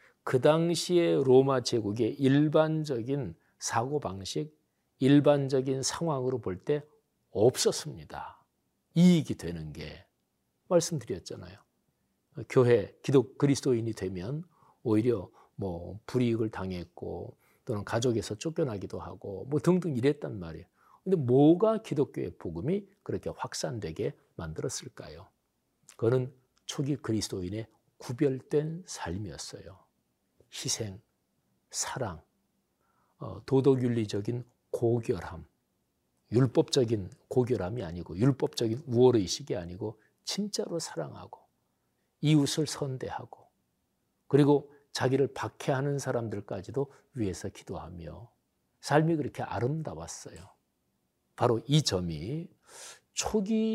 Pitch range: 110-150 Hz